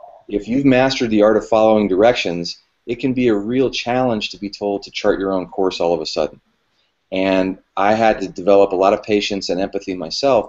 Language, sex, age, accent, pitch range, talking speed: English, male, 30-49, American, 100-115 Hz, 215 wpm